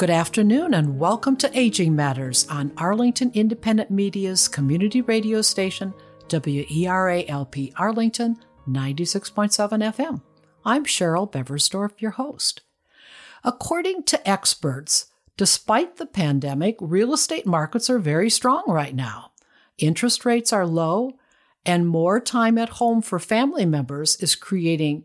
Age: 60-79